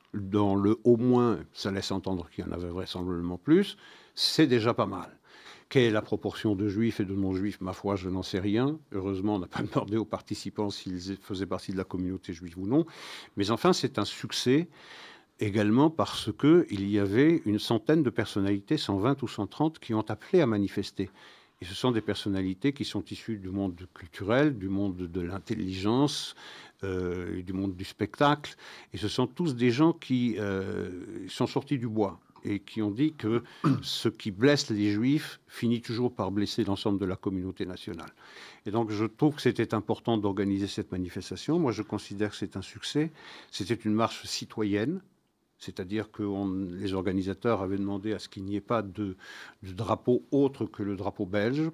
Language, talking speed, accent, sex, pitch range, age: French, 190 wpm, French, male, 95-120 Hz, 50-69